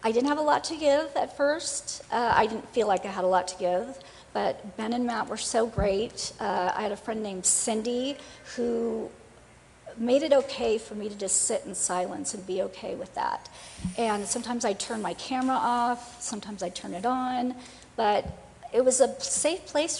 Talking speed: 205 wpm